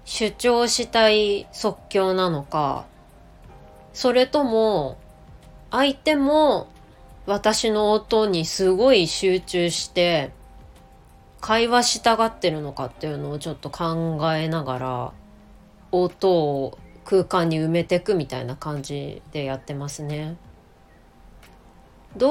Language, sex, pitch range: Japanese, female, 150-220 Hz